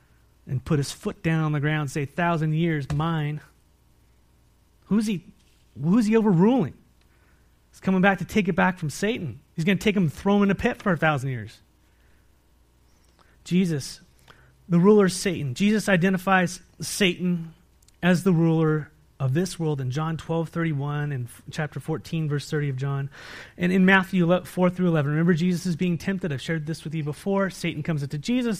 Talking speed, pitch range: 190 wpm, 135-190 Hz